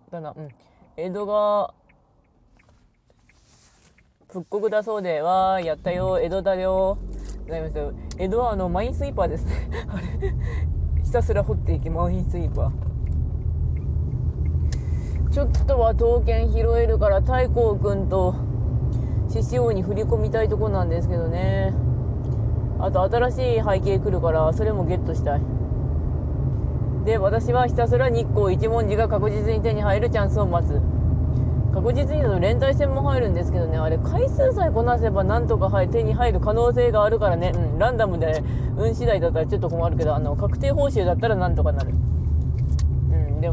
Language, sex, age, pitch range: Japanese, female, 20-39, 75-120 Hz